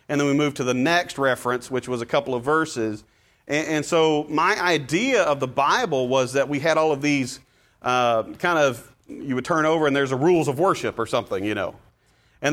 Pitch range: 130-170 Hz